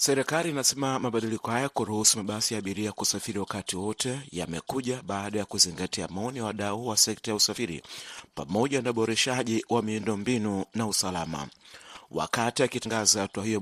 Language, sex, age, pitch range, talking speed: Swahili, male, 40-59, 100-120 Hz, 145 wpm